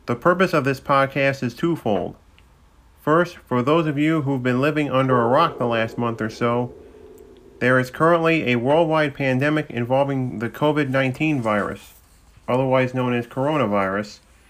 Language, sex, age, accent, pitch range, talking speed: English, male, 40-59, American, 110-145 Hz, 155 wpm